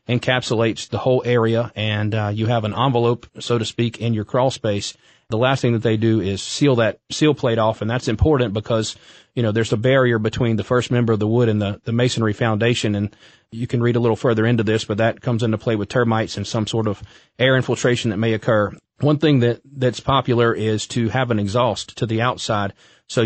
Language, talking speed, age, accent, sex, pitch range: English, 230 wpm, 30-49, American, male, 110-125 Hz